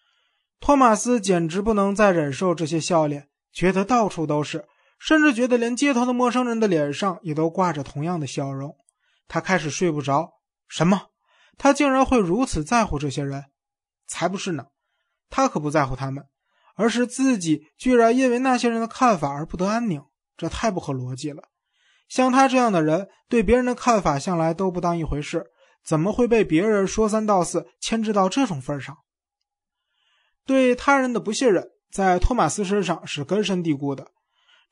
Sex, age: male, 20-39